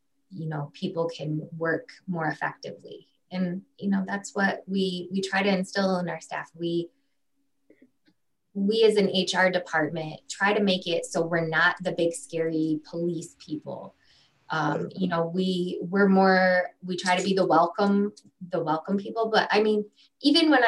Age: 20-39